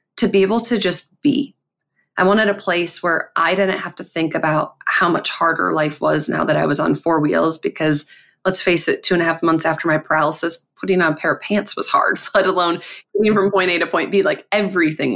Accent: American